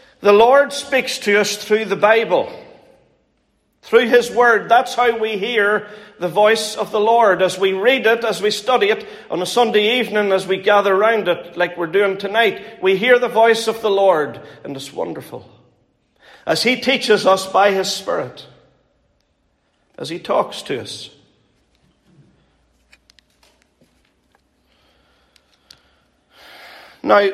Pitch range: 195-245 Hz